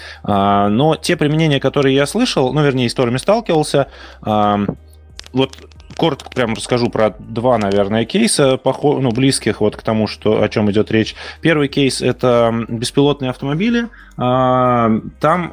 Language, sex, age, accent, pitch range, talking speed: Russian, male, 20-39, native, 105-135 Hz, 130 wpm